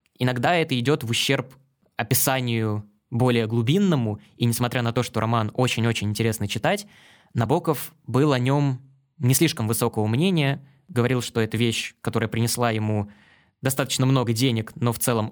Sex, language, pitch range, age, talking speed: male, Russian, 110-140 Hz, 20-39, 150 wpm